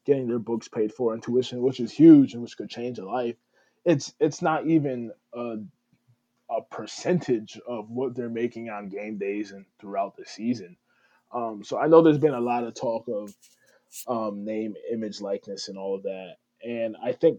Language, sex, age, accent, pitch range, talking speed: English, male, 20-39, American, 110-130 Hz, 195 wpm